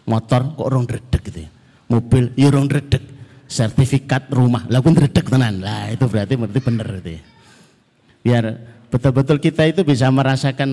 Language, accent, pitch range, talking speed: Indonesian, native, 120-170 Hz, 140 wpm